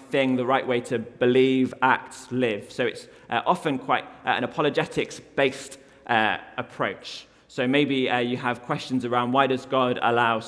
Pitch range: 125-160 Hz